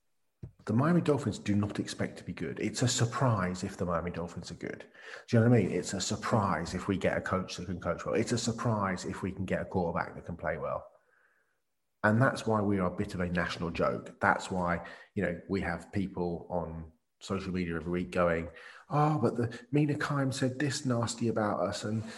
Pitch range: 100-145 Hz